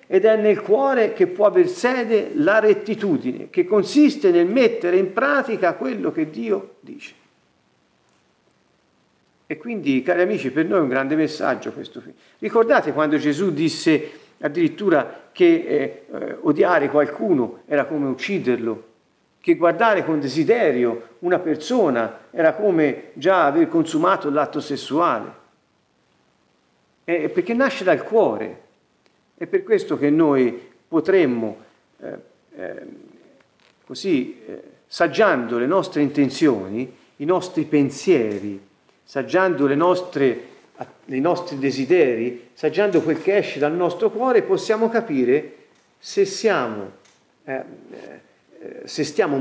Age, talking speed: 50-69, 120 wpm